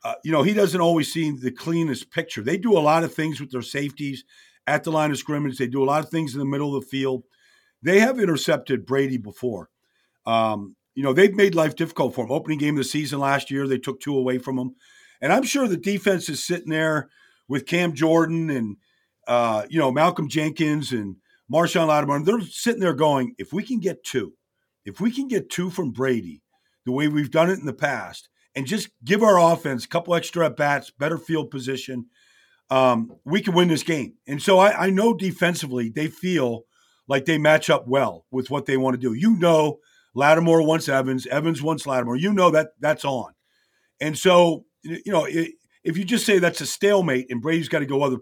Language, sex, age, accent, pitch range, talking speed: English, male, 50-69, American, 135-170 Hz, 220 wpm